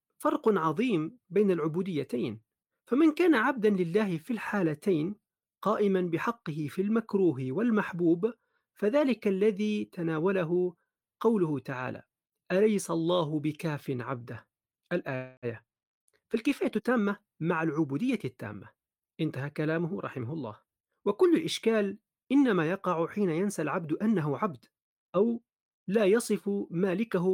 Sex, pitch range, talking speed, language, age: male, 160-220 Hz, 105 wpm, Arabic, 40-59